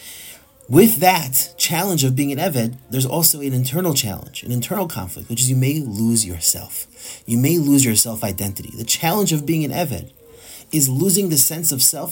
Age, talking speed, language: 30-49, 190 wpm, English